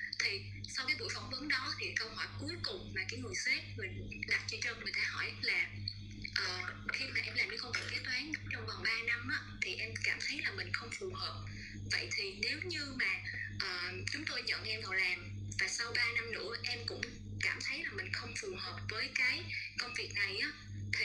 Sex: female